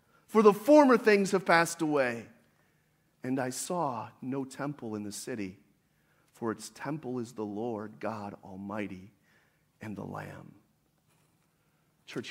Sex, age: male, 40-59